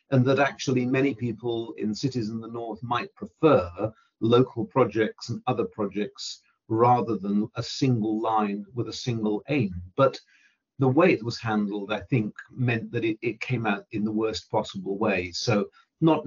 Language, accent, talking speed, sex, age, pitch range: English, British, 175 wpm, male, 50-69, 105-130 Hz